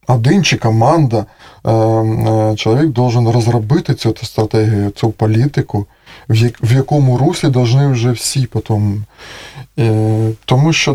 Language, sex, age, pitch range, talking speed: Russian, male, 20-39, 110-145 Hz, 110 wpm